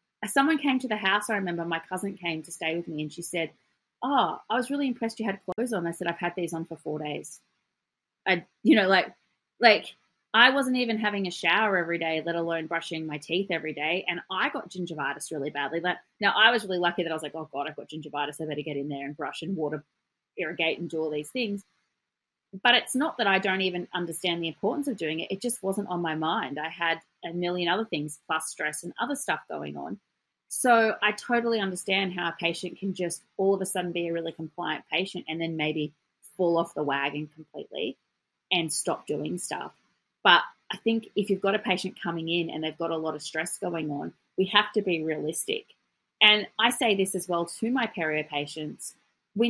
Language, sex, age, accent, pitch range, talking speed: English, female, 30-49, Australian, 160-205 Hz, 225 wpm